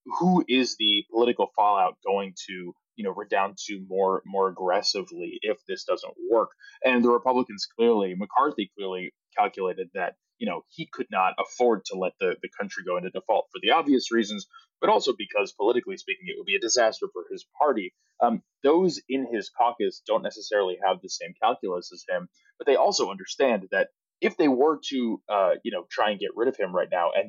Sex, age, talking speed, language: male, 20-39, 200 wpm, English